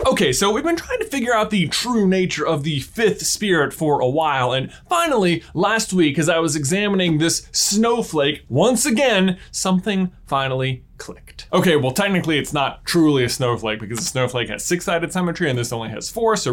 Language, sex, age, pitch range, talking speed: English, male, 20-39, 140-220 Hz, 190 wpm